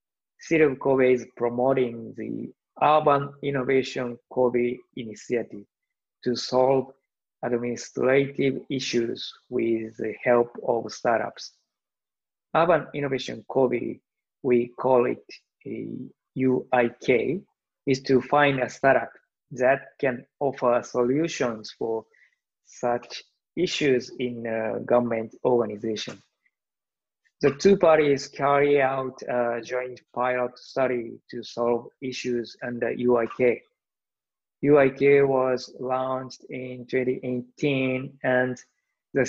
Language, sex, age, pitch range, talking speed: English, male, 20-39, 120-135 Hz, 100 wpm